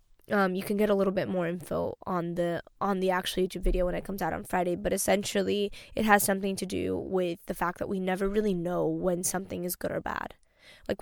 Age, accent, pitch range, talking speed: 10-29, American, 180-200 Hz, 240 wpm